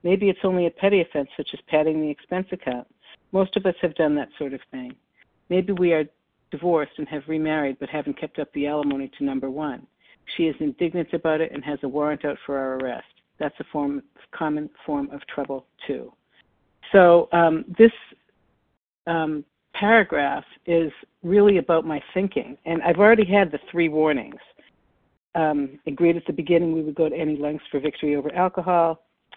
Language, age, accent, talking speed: English, 60-79, American, 185 wpm